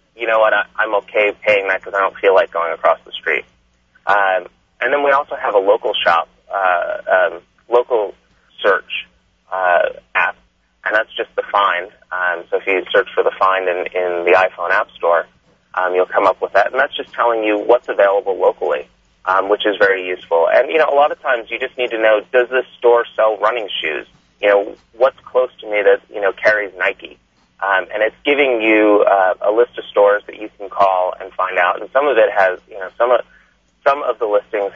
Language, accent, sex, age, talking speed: English, American, male, 30-49, 220 wpm